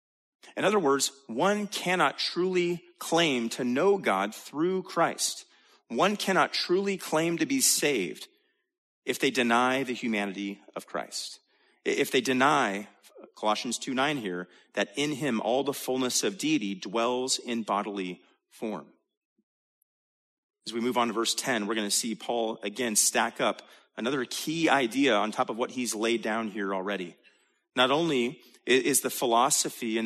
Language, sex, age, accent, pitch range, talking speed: English, male, 30-49, American, 110-170 Hz, 155 wpm